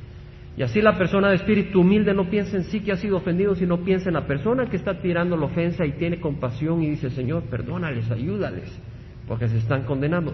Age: 50-69